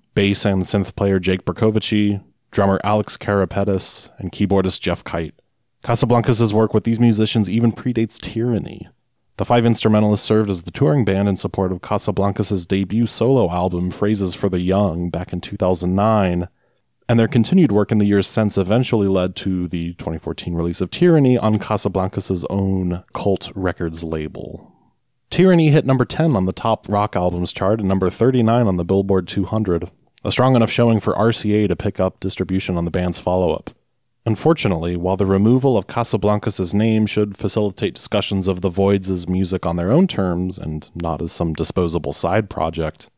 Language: English